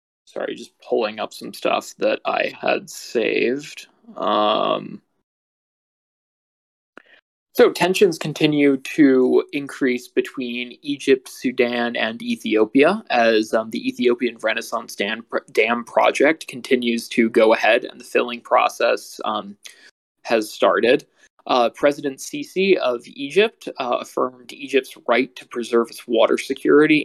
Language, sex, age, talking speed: English, male, 20-39, 120 wpm